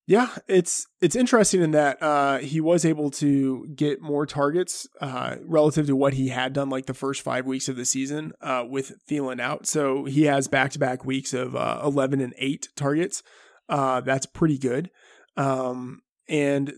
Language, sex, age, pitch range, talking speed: English, male, 20-39, 135-160 Hz, 180 wpm